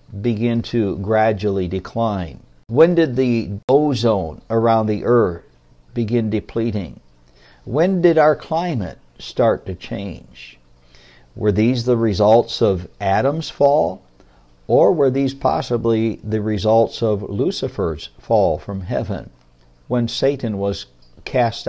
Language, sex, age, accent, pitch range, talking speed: English, male, 60-79, American, 95-125 Hz, 115 wpm